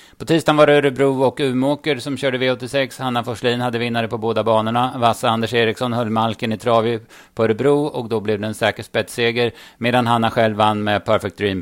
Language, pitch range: Swedish, 105-125 Hz